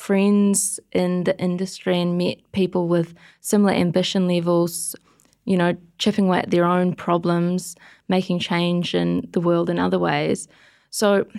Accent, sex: Australian, female